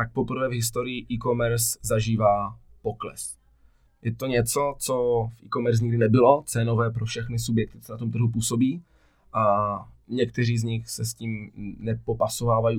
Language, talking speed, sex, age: Czech, 150 wpm, male, 20-39